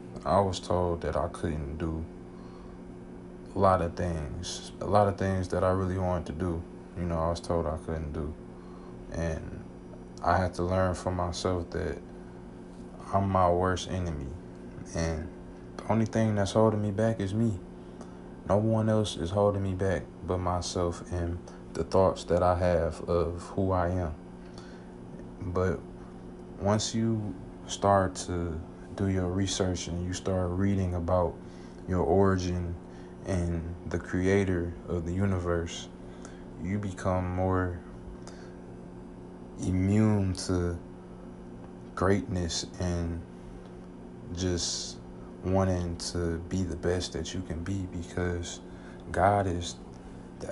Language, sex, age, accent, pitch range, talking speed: English, male, 20-39, American, 85-95 Hz, 130 wpm